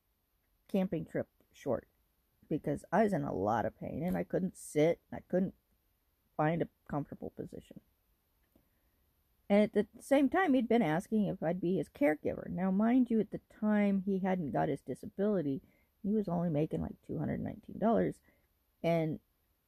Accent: American